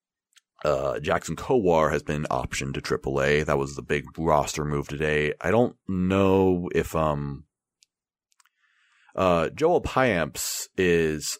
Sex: male